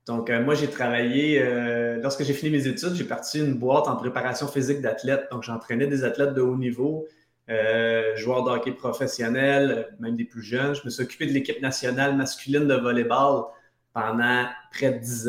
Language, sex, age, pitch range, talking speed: French, male, 30-49, 120-140 Hz, 190 wpm